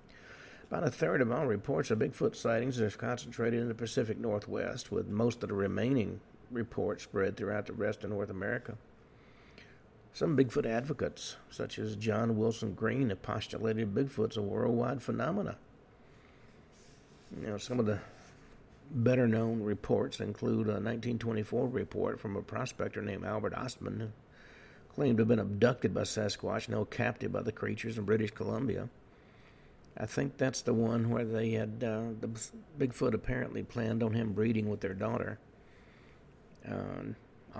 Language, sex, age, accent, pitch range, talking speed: English, male, 50-69, American, 105-120 Hz, 150 wpm